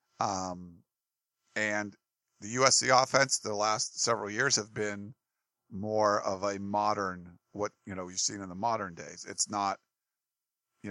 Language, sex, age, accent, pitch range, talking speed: English, male, 40-59, American, 100-115 Hz, 150 wpm